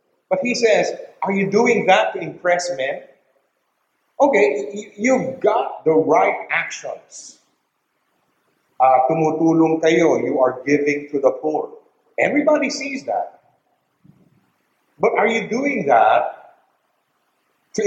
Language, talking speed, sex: English, 115 wpm, male